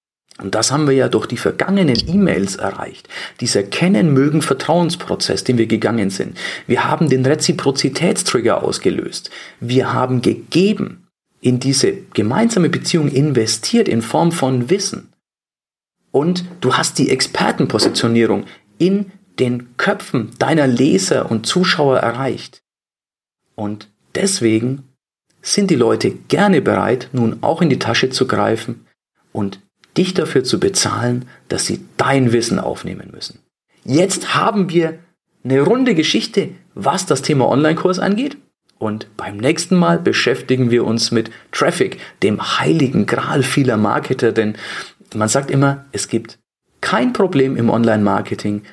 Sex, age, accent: male, 40-59, German